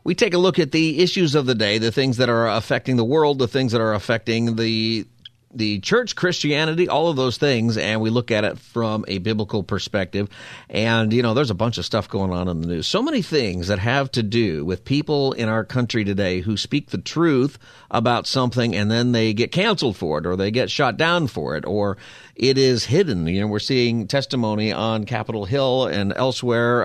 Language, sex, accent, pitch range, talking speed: English, male, American, 100-130 Hz, 220 wpm